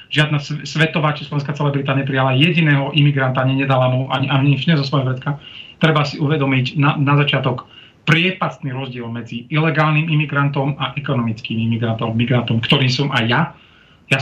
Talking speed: 145 wpm